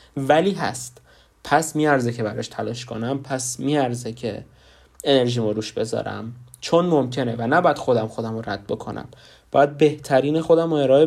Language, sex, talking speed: Persian, male, 145 wpm